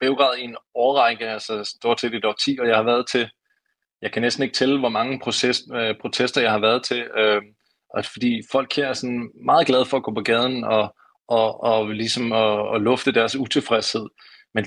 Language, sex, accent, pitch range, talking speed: Danish, male, native, 110-135 Hz, 210 wpm